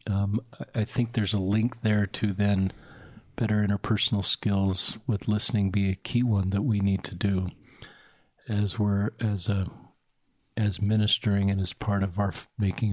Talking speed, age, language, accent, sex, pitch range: 160 wpm, 50-69, English, American, male, 105-125 Hz